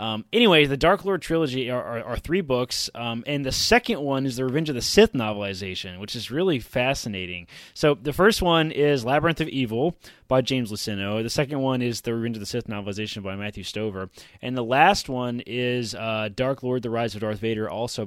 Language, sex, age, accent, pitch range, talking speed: English, male, 20-39, American, 110-150 Hz, 215 wpm